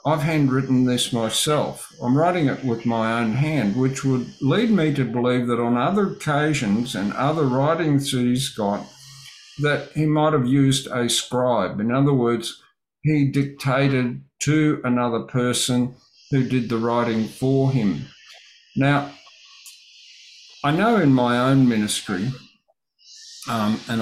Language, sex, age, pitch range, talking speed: English, male, 50-69, 115-140 Hz, 140 wpm